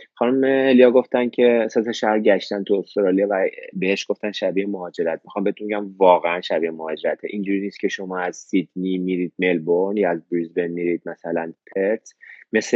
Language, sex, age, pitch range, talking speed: Persian, male, 30-49, 90-110 Hz, 160 wpm